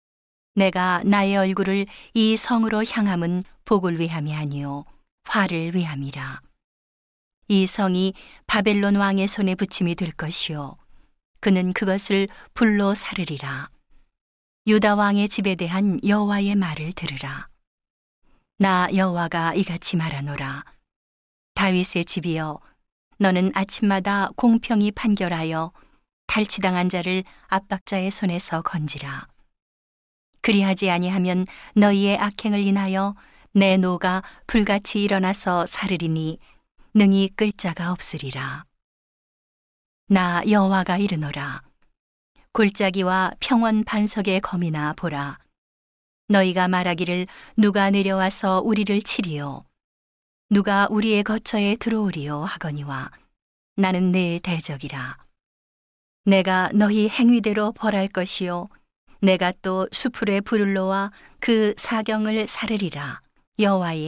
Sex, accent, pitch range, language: female, native, 170-205 Hz, Korean